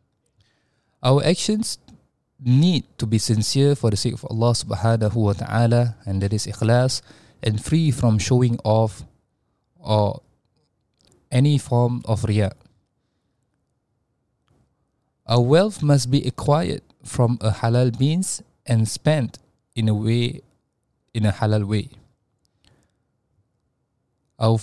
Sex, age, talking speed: male, 20-39, 115 wpm